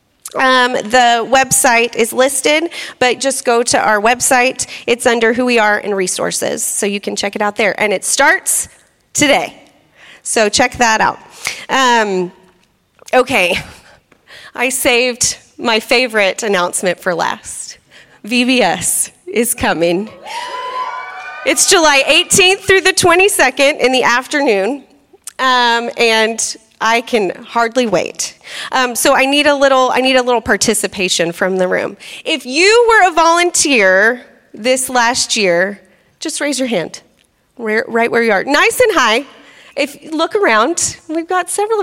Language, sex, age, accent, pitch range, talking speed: English, female, 30-49, American, 225-315 Hz, 140 wpm